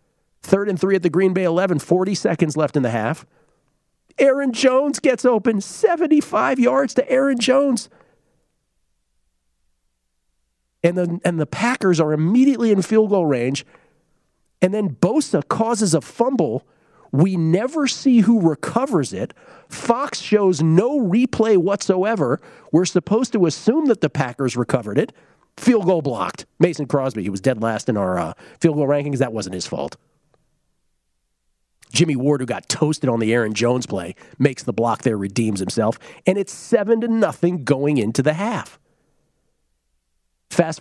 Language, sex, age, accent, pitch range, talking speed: English, male, 40-59, American, 125-195 Hz, 155 wpm